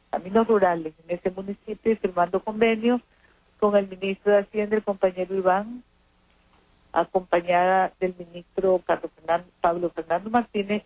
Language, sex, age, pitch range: Spanish, female, 50-69, 170-205 Hz